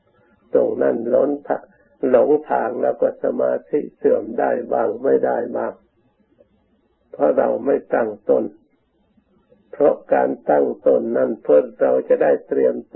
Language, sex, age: Thai, male, 60-79